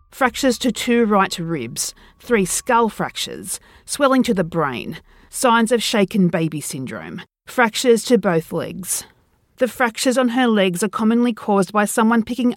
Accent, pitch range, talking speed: Australian, 180-235 Hz, 155 wpm